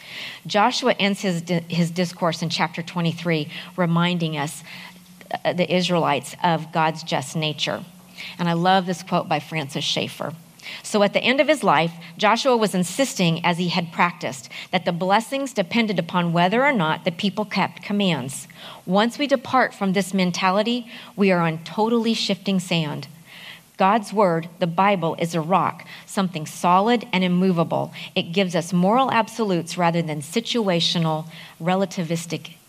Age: 40-59